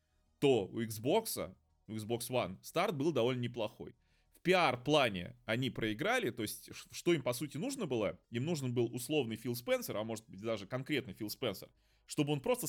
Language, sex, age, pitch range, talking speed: Russian, male, 20-39, 105-140 Hz, 180 wpm